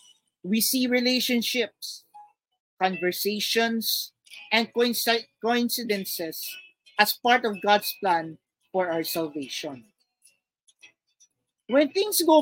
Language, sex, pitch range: Filipino, male, 200-255 Hz